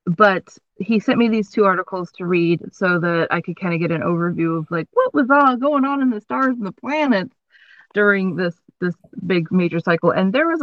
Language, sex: English, female